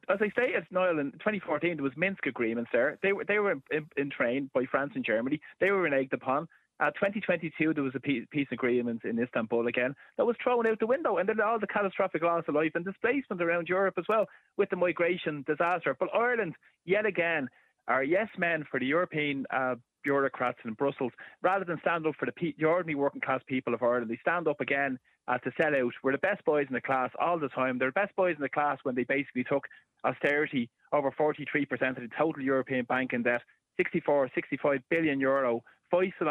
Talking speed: 215 wpm